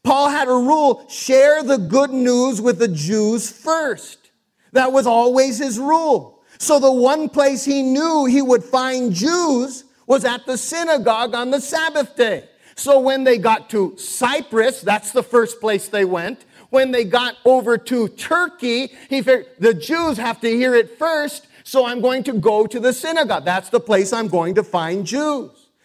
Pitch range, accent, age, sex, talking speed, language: 230-275 Hz, American, 40-59, male, 180 wpm, English